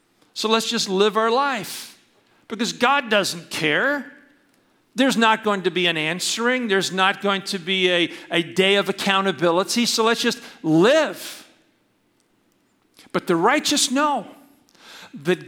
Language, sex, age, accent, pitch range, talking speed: English, male, 50-69, American, 170-250 Hz, 140 wpm